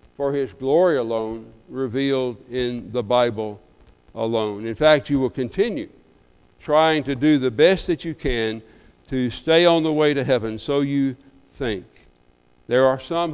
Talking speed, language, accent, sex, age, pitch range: 155 wpm, English, American, male, 60-79, 110-145 Hz